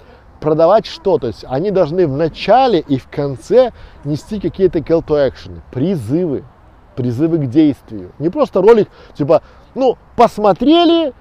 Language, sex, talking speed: Russian, male, 140 wpm